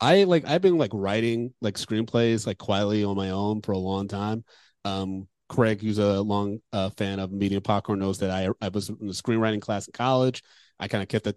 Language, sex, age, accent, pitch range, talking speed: English, male, 30-49, American, 100-120 Hz, 225 wpm